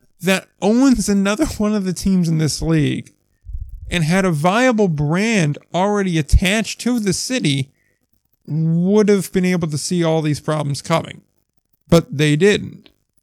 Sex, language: male, English